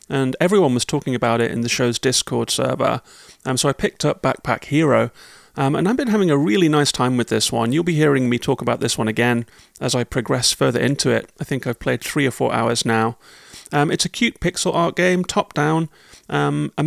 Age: 30-49